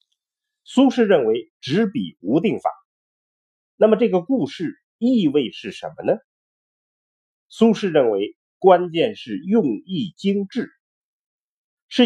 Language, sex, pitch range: Chinese, male, 160-265 Hz